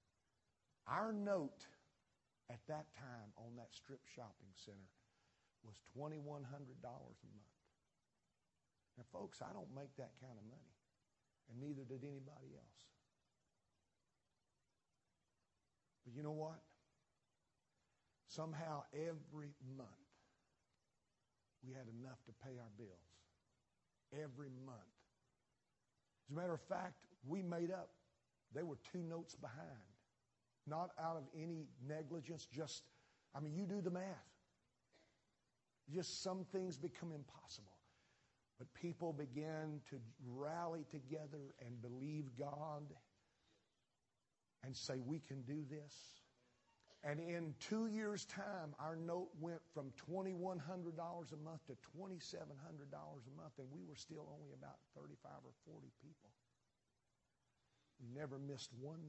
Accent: American